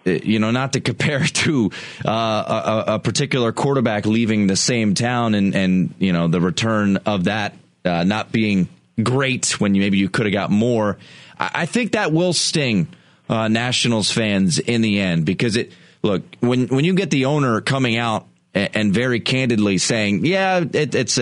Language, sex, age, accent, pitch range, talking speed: English, male, 30-49, American, 110-165 Hz, 180 wpm